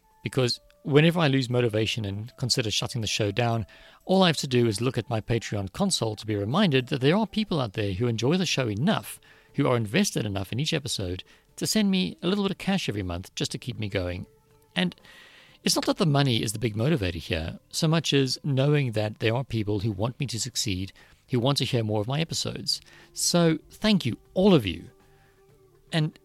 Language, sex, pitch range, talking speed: English, male, 105-150 Hz, 220 wpm